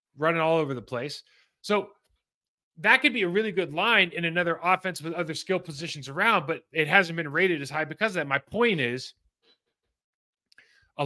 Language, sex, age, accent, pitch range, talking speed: English, male, 30-49, American, 140-175 Hz, 190 wpm